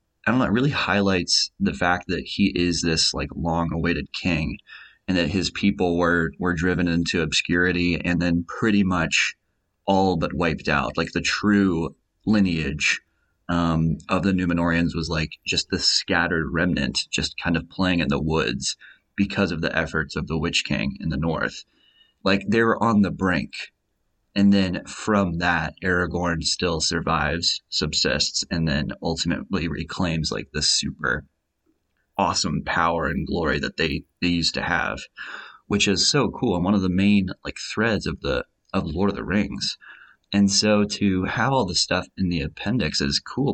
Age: 30-49